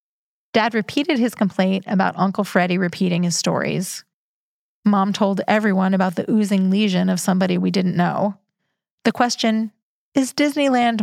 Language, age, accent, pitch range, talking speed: English, 30-49, American, 180-205 Hz, 140 wpm